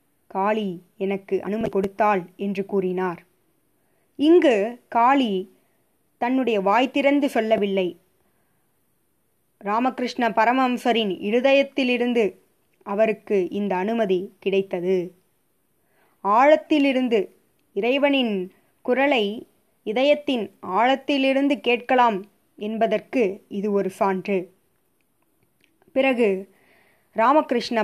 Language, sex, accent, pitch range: Tamil, female, native, 200-250 Hz